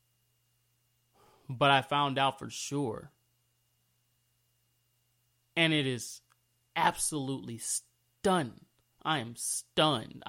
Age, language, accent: 30-49, English, American